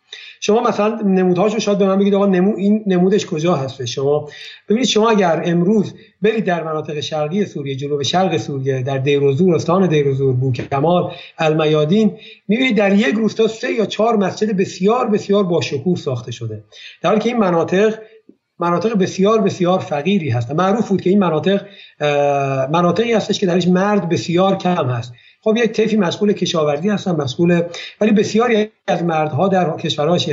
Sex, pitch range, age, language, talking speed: male, 150-205 Hz, 50-69, Persian, 160 wpm